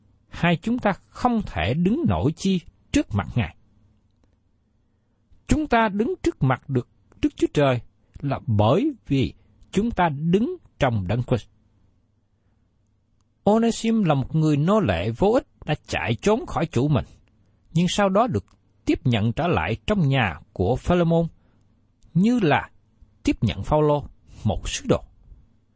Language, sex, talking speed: Vietnamese, male, 150 wpm